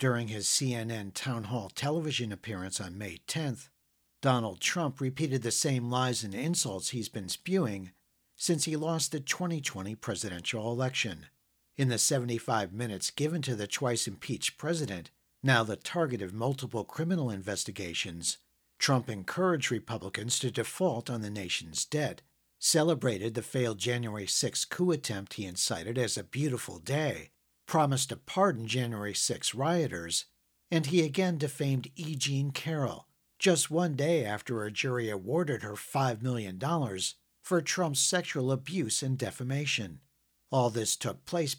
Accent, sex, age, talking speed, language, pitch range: American, male, 50-69, 145 wpm, English, 110-150 Hz